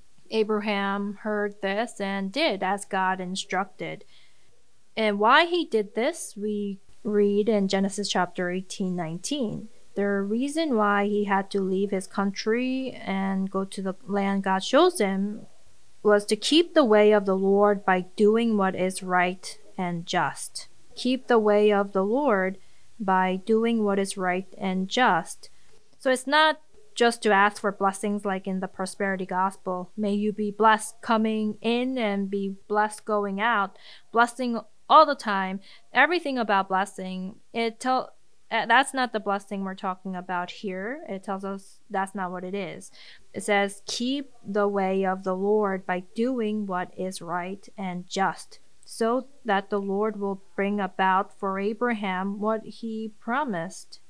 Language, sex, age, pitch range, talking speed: English, female, 20-39, 190-220 Hz, 155 wpm